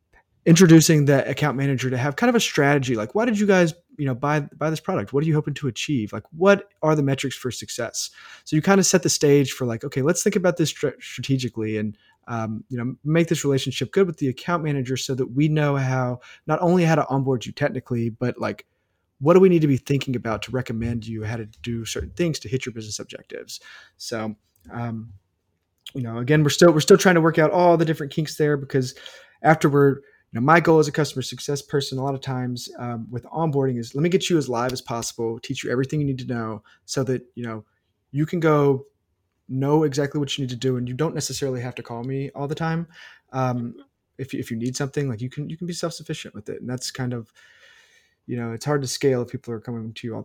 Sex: male